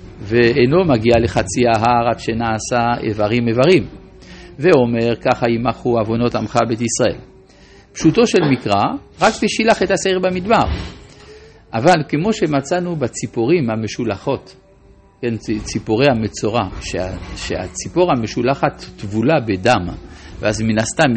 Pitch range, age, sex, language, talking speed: 105-150 Hz, 50-69, male, Hebrew, 110 wpm